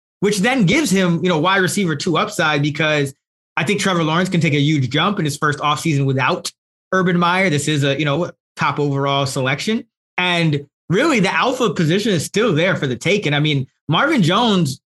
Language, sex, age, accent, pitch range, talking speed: English, male, 20-39, American, 135-170 Hz, 200 wpm